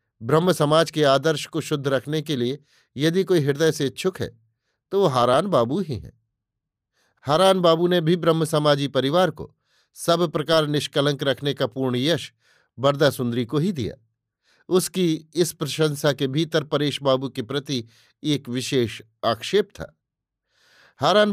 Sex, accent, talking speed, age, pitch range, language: male, native, 150 wpm, 50-69, 125-165 Hz, Hindi